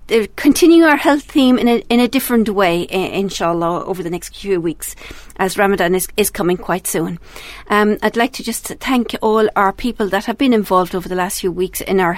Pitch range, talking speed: 190-225 Hz, 210 wpm